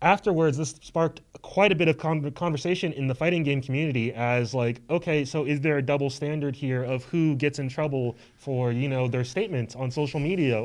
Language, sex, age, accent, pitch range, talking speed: English, male, 20-39, American, 125-155 Hz, 205 wpm